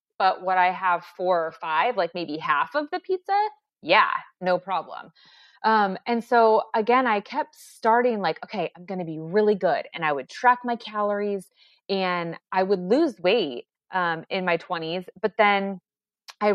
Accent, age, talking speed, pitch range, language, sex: American, 20-39, 180 wpm, 180-225 Hz, English, female